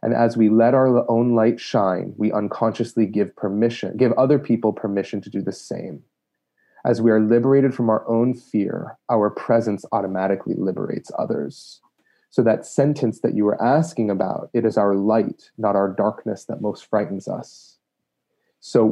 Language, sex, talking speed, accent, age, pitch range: English, male, 170 wpm, American, 30-49, 110-130 Hz